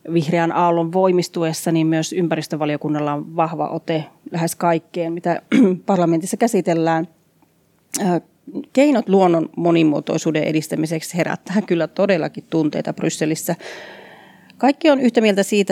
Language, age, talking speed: Finnish, 30-49, 105 wpm